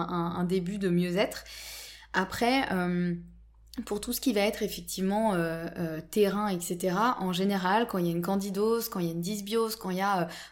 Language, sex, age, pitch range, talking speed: French, female, 20-39, 175-210 Hz, 200 wpm